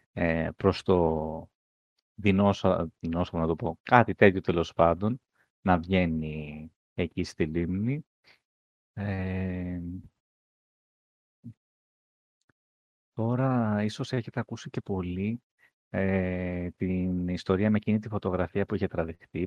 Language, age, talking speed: Greek, 30-49, 90 wpm